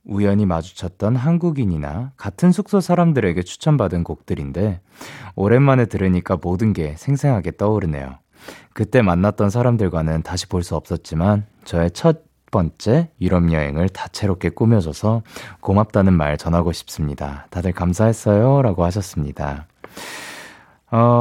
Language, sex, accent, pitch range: Korean, male, native, 85-135 Hz